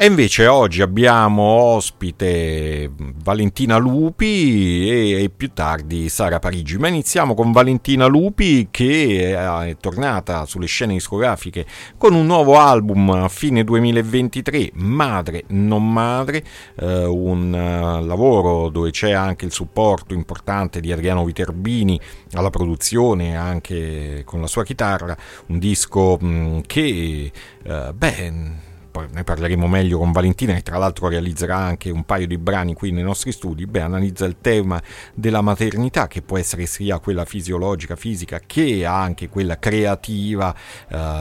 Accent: native